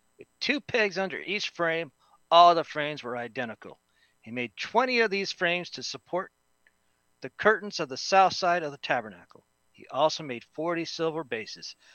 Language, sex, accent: English, male, American